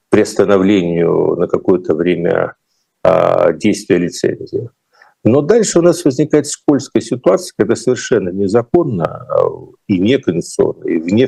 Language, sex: Russian, male